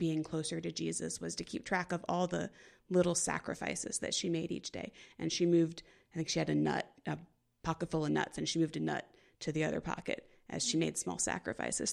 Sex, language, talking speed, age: female, English, 230 wpm, 30-49